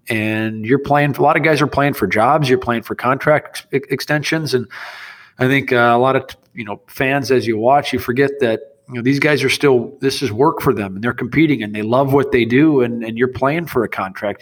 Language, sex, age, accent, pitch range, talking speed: English, male, 40-59, American, 120-140 Hz, 250 wpm